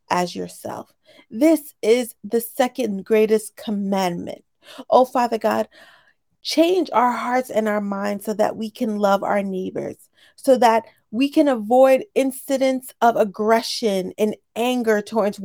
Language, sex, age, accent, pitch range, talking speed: English, female, 30-49, American, 205-250 Hz, 135 wpm